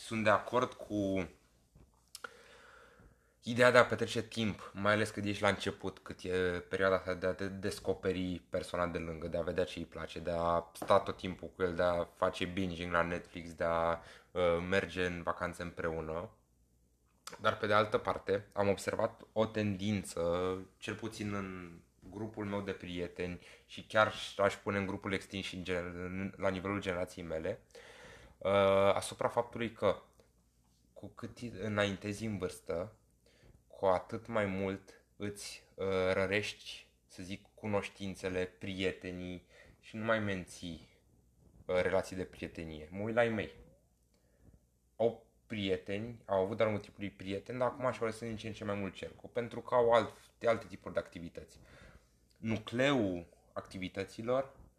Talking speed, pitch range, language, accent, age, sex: 145 wpm, 90-105 Hz, Romanian, native, 20-39, male